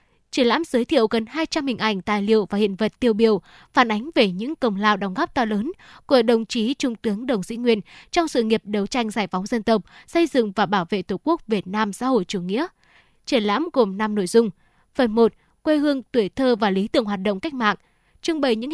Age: 10-29